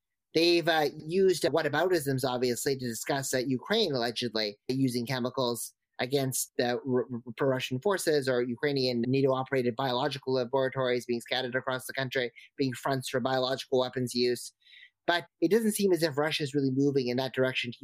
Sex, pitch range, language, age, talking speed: male, 130-155 Hz, English, 30-49, 160 wpm